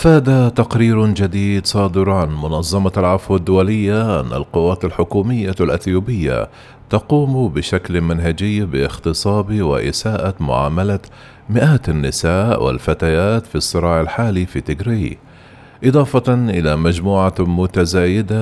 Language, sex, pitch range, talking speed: Arabic, male, 85-110 Hz, 100 wpm